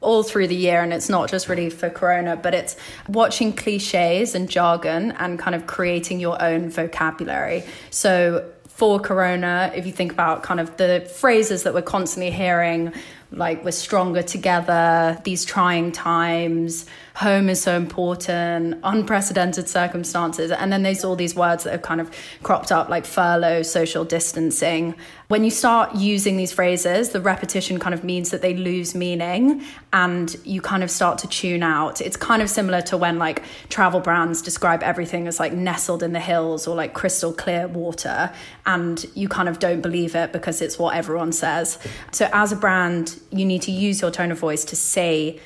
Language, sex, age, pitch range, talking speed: English, female, 30-49, 170-185 Hz, 185 wpm